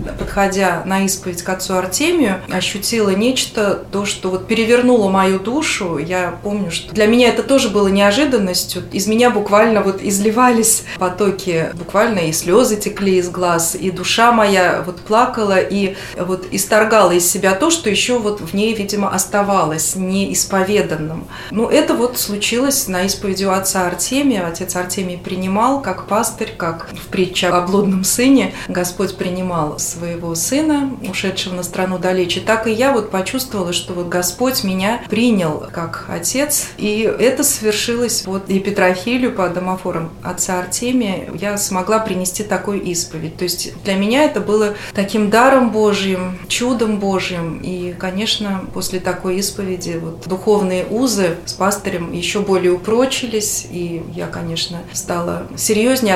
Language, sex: Russian, female